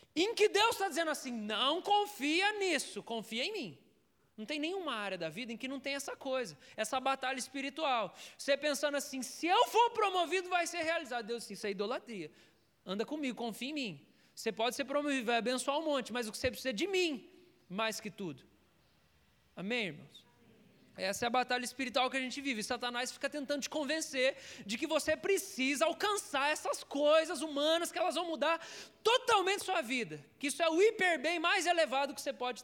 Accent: Brazilian